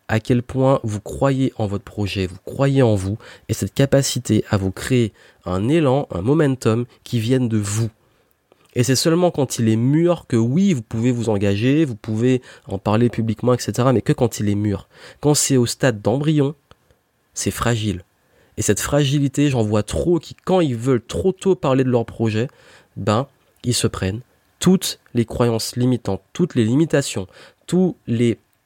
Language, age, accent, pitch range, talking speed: French, 30-49, French, 110-140 Hz, 180 wpm